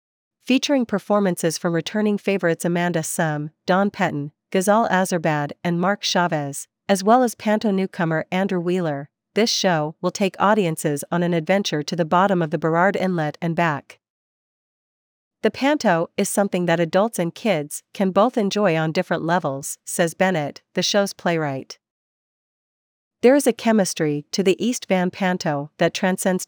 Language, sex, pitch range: English, female, 160-205 Hz